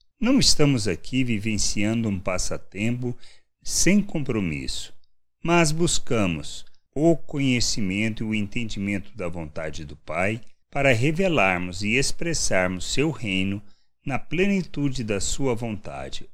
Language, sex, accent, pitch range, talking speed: Portuguese, male, Brazilian, 95-135 Hz, 110 wpm